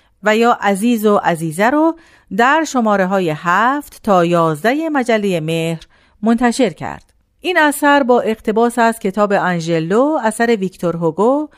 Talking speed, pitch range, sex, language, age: 135 wpm, 175-245 Hz, female, Persian, 40-59